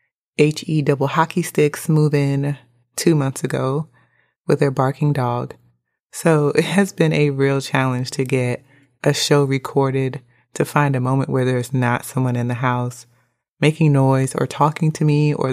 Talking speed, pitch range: 165 wpm, 125-150 Hz